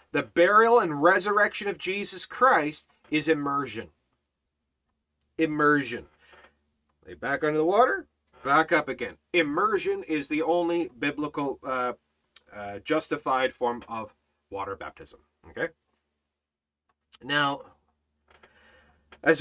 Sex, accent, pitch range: male, American, 120-165 Hz